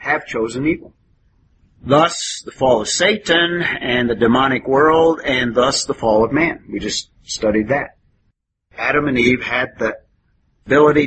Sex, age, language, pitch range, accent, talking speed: male, 50-69, English, 115-150 Hz, American, 150 wpm